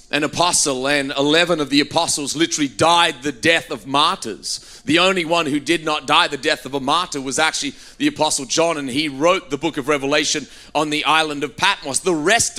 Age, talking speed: 30-49, 210 wpm